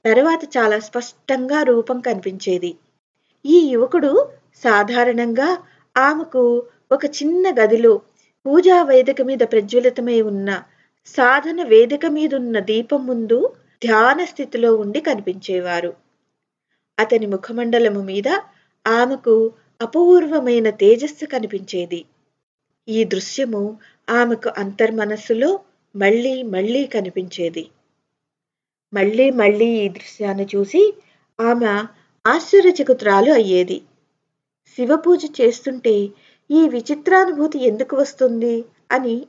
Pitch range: 205-270 Hz